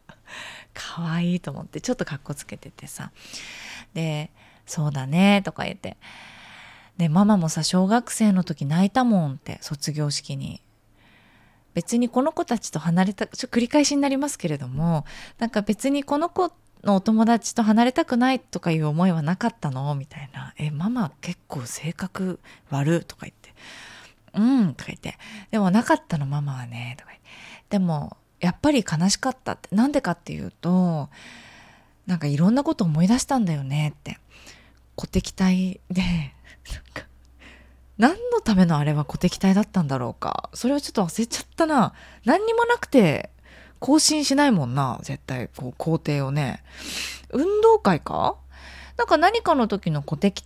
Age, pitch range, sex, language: 20-39, 145-235 Hz, female, Japanese